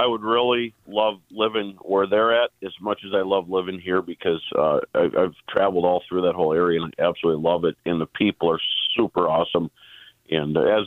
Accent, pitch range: American, 95-115 Hz